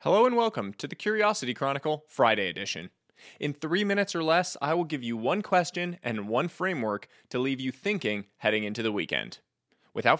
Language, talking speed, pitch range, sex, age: English, 190 wpm, 130-190 Hz, male, 20-39